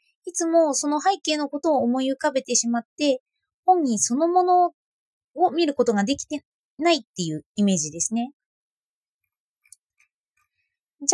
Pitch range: 205-320 Hz